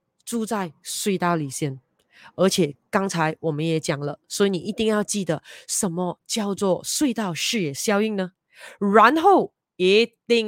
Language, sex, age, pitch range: Chinese, female, 20-39, 170-220 Hz